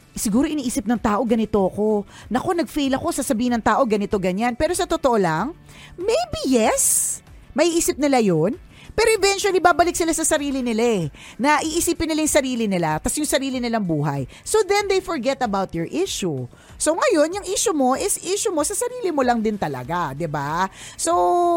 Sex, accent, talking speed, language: female, Filipino, 185 wpm, English